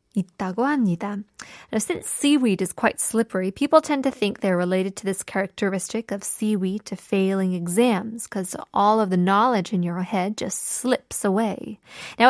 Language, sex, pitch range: Korean, female, 195-260 Hz